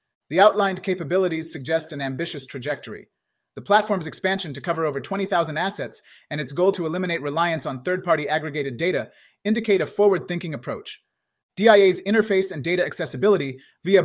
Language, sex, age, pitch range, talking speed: English, male, 30-49, 155-195 Hz, 150 wpm